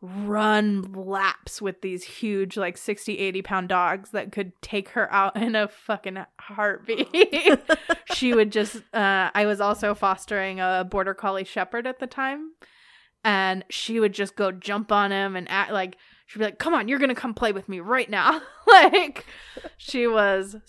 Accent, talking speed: American, 175 wpm